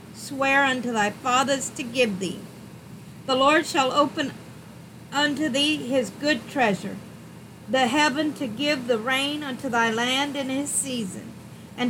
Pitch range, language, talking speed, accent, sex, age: 230-275 Hz, English, 145 wpm, American, female, 50-69